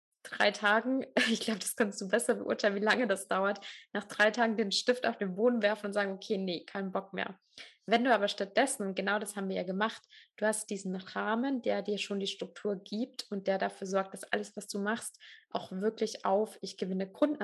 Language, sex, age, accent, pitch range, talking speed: German, female, 20-39, German, 195-225 Hz, 225 wpm